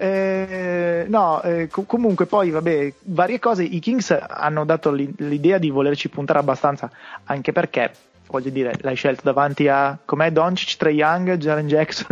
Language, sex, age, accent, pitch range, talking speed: Italian, male, 20-39, native, 140-180 Hz, 165 wpm